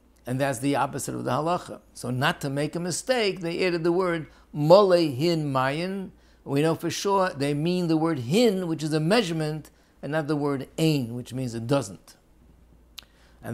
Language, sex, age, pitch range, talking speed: English, male, 60-79, 120-155 Hz, 190 wpm